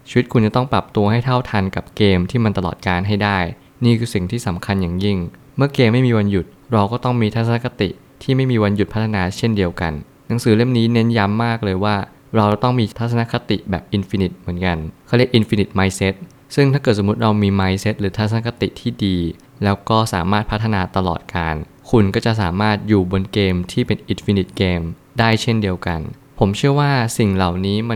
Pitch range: 95-115 Hz